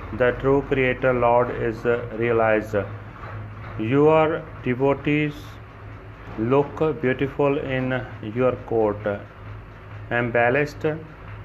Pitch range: 105-135 Hz